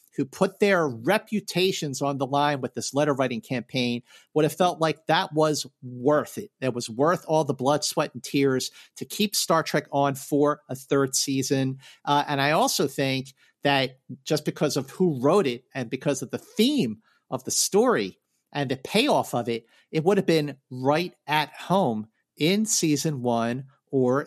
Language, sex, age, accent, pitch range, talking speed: English, male, 50-69, American, 135-180 Hz, 185 wpm